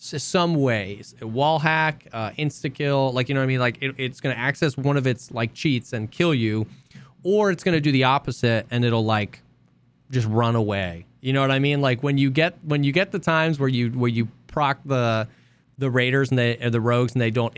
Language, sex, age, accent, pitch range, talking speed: English, male, 20-39, American, 115-140 Hz, 235 wpm